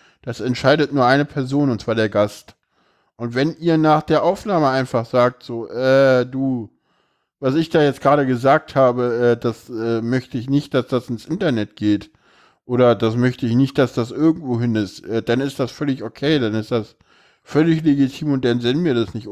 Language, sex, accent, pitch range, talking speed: German, male, German, 120-140 Hz, 200 wpm